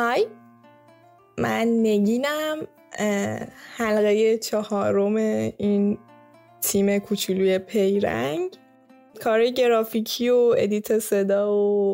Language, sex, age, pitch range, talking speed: Persian, female, 10-29, 195-225 Hz, 75 wpm